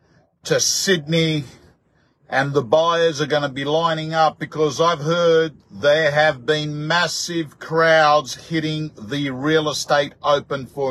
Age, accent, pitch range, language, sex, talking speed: 50-69, Australian, 145-185 Hz, English, male, 140 wpm